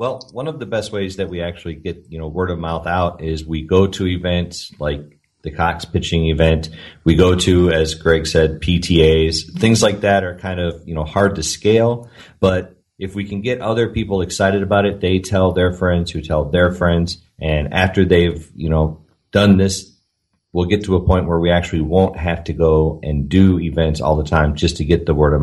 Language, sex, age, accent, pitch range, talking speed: English, male, 30-49, American, 80-90 Hz, 220 wpm